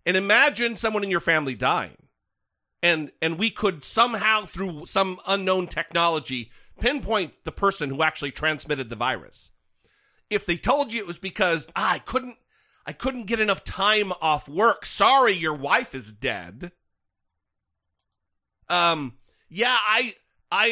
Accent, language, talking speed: American, English, 145 wpm